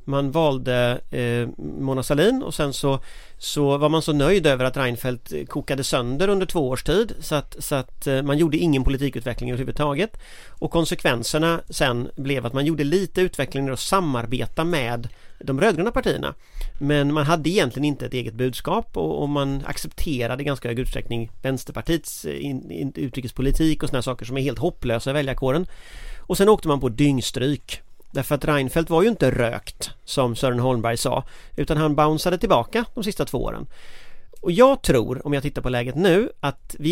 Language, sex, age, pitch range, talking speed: Swedish, male, 30-49, 125-160 Hz, 180 wpm